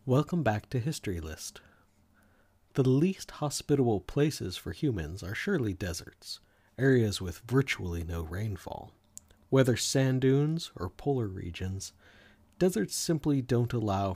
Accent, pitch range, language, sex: American, 95-130 Hz, English, male